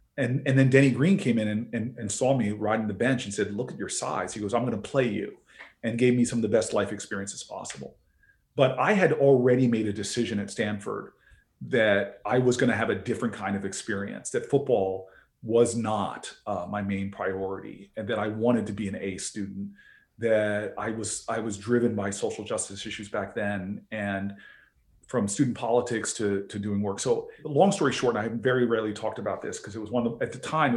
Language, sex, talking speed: English, male, 225 wpm